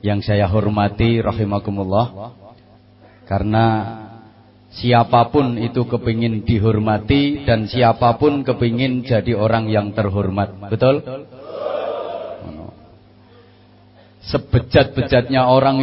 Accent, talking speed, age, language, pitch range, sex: Indonesian, 70 wpm, 30-49, English, 105-135 Hz, male